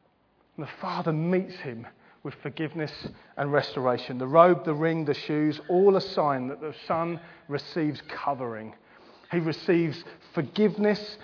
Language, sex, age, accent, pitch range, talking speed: English, male, 40-59, British, 145-195 Hz, 140 wpm